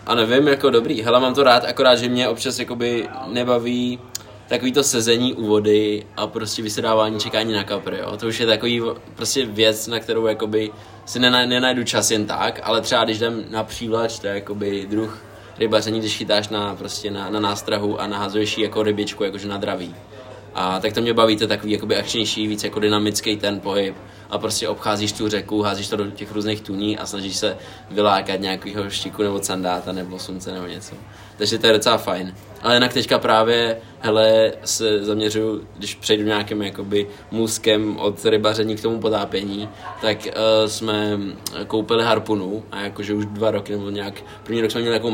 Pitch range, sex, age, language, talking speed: 105-115 Hz, male, 20-39, Czech, 185 wpm